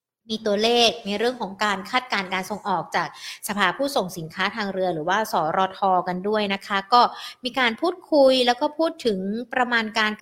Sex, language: female, Thai